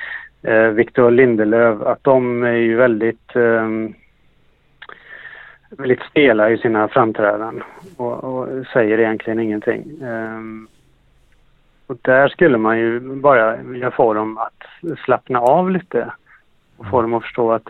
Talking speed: 125 wpm